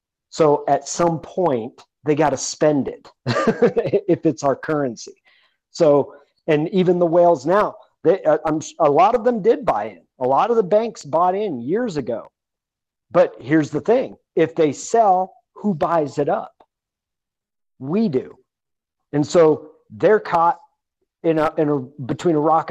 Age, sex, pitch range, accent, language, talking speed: 40-59, male, 145-190 Hz, American, English, 160 wpm